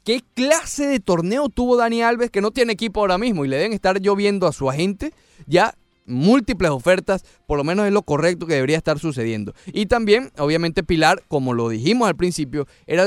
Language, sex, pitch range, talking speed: Spanish, male, 145-220 Hz, 200 wpm